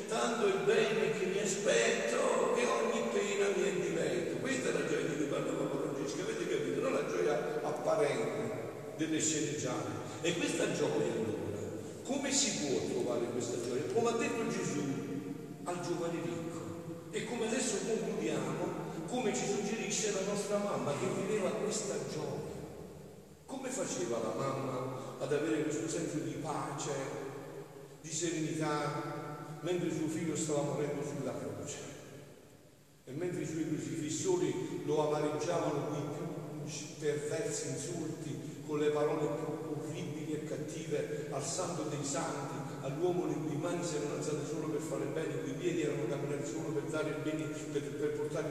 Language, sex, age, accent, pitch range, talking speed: Italian, male, 50-69, native, 145-170 Hz, 160 wpm